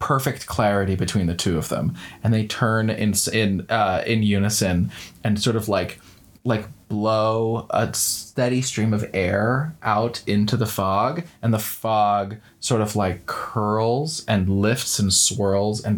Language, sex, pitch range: English, male, 100-125 Hz